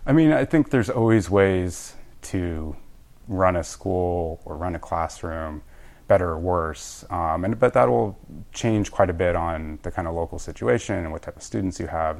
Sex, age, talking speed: male, 30-49, 195 wpm